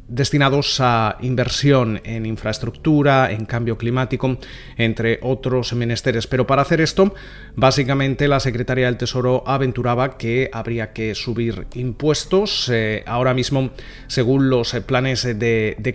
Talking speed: 130 wpm